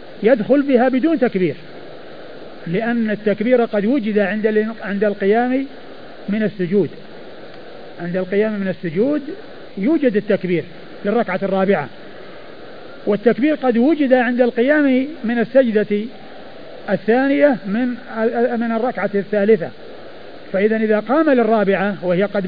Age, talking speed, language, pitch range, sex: 50-69, 100 wpm, Arabic, 200-255 Hz, male